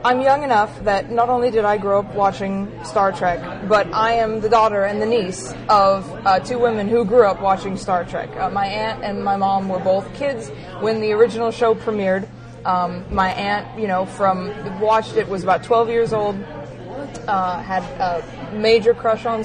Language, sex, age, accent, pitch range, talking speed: English, female, 20-39, American, 195-230 Hz, 195 wpm